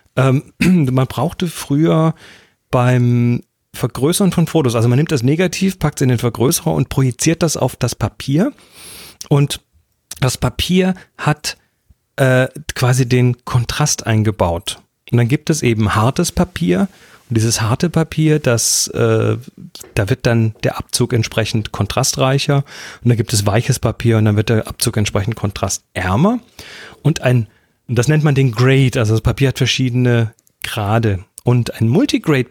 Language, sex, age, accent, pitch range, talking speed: German, male, 40-59, German, 115-150 Hz, 150 wpm